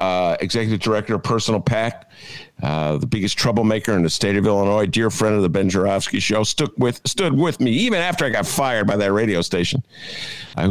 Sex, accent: male, American